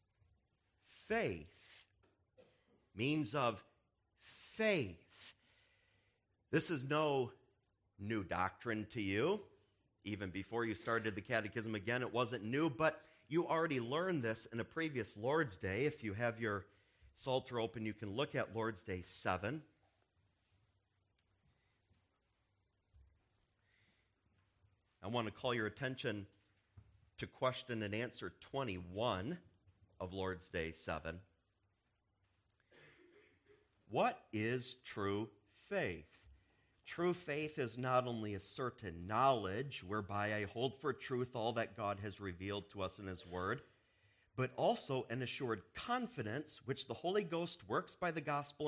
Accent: American